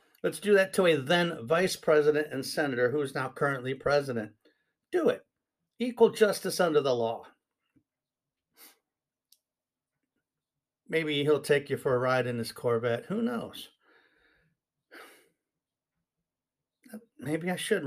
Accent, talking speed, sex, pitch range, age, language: American, 125 wpm, male, 120-155 Hz, 50-69, English